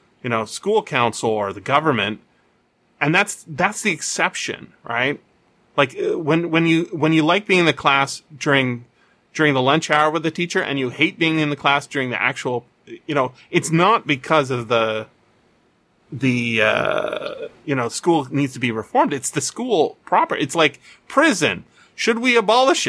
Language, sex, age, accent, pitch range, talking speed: English, male, 30-49, American, 125-190 Hz, 180 wpm